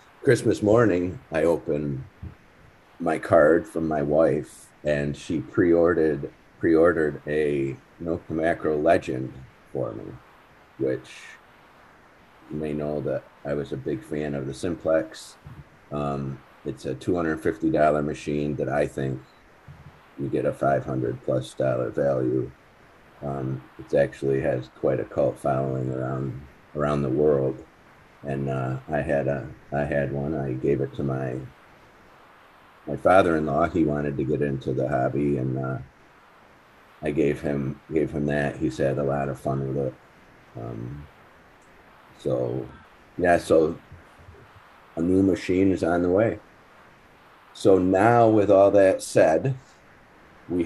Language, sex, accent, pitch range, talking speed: English, male, American, 70-80 Hz, 135 wpm